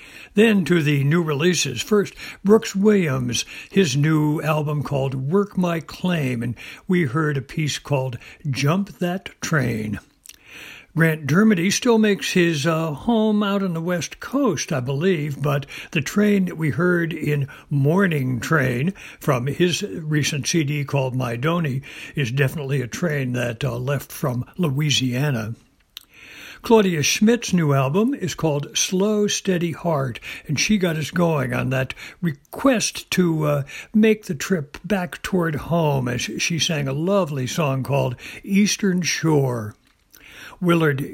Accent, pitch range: American, 140-180 Hz